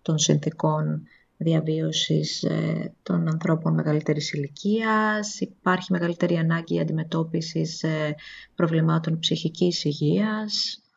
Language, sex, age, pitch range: Greek, female, 20-39, 155-185 Hz